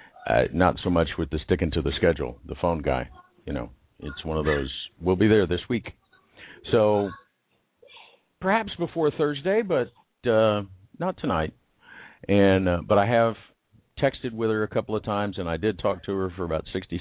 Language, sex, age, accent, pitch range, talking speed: English, male, 50-69, American, 75-105 Hz, 185 wpm